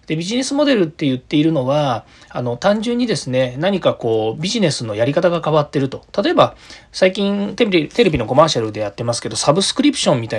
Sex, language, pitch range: male, Japanese, 115-190 Hz